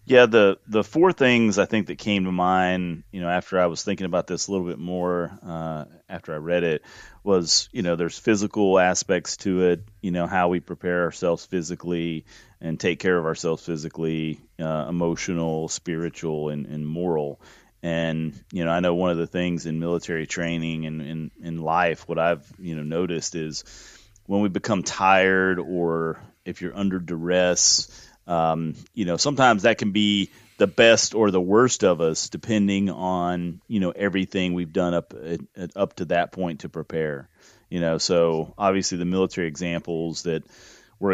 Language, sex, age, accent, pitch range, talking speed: English, male, 30-49, American, 85-95 Hz, 180 wpm